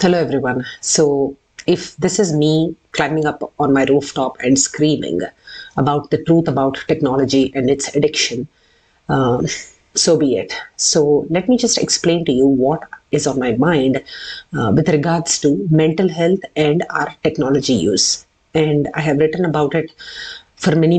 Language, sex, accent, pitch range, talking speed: English, female, Indian, 140-165 Hz, 160 wpm